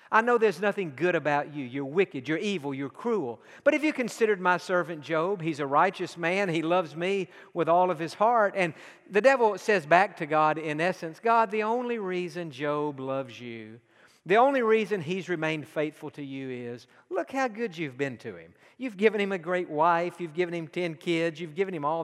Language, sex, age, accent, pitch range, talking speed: English, male, 50-69, American, 155-215 Hz, 215 wpm